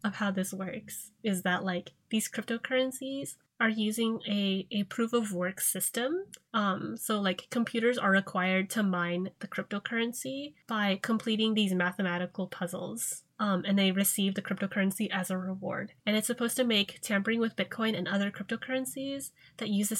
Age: 20-39